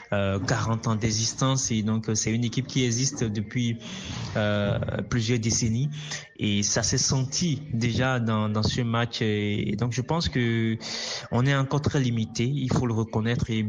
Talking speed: 170 wpm